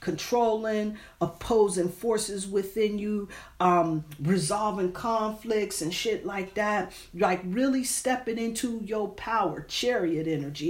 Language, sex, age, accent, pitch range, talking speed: English, female, 40-59, American, 180-250 Hz, 110 wpm